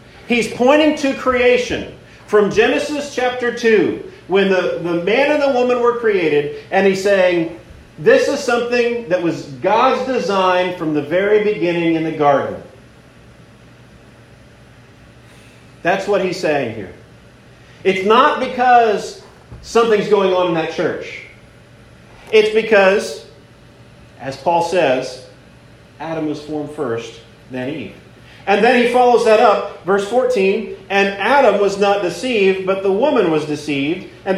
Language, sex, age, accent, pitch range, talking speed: English, male, 40-59, American, 165-245 Hz, 135 wpm